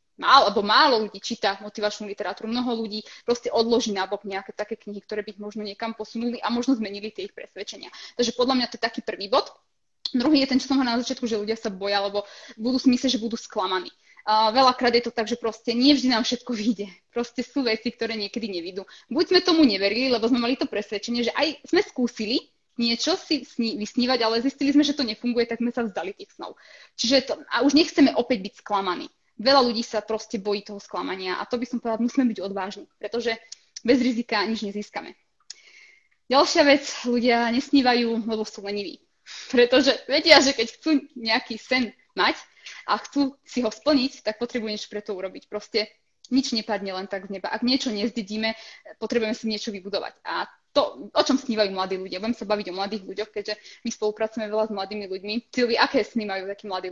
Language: Slovak